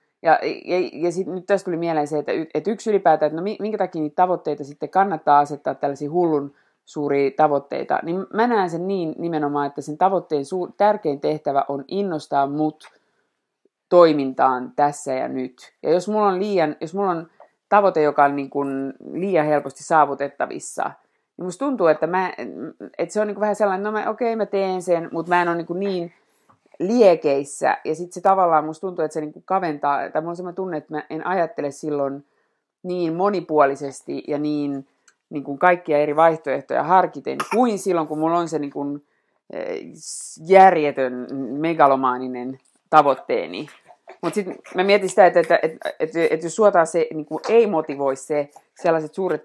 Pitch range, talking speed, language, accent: 145-185 Hz, 175 wpm, Finnish, native